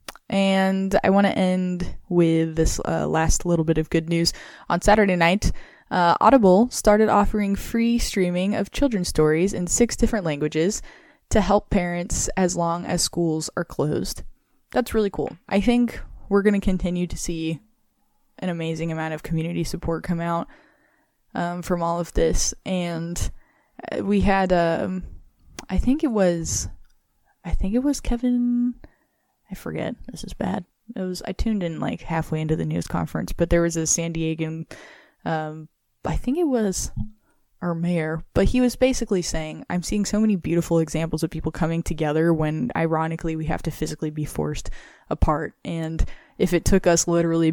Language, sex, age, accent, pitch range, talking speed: English, female, 10-29, American, 155-195 Hz, 170 wpm